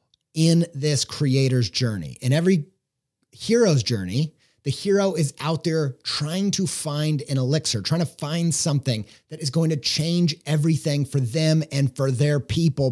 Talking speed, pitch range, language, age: 160 wpm, 135-165 Hz, English, 30-49